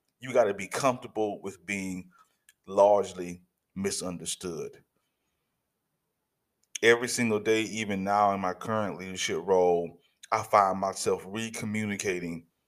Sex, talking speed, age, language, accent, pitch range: male, 110 wpm, 20-39, English, American, 95-120 Hz